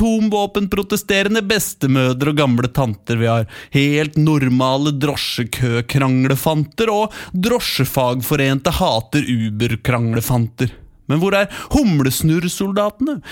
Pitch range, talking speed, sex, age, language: 165-245 Hz, 105 wpm, male, 30-49, English